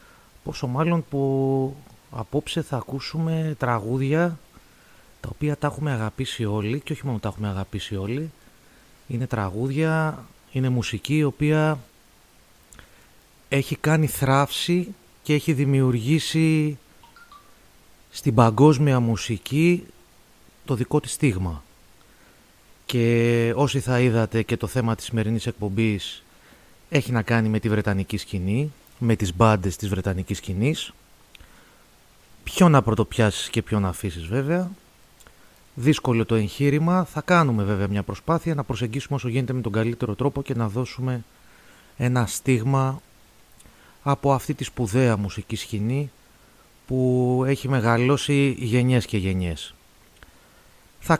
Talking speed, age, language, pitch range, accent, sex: 120 wpm, 30-49, Greek, 110-145 Hz, native, male